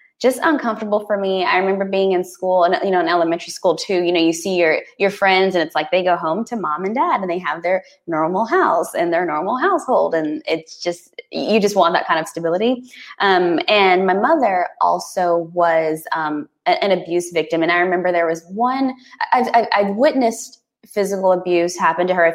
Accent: American